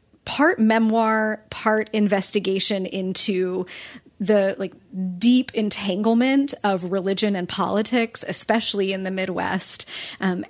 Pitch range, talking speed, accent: 185-220 Hz, 105 wpm, American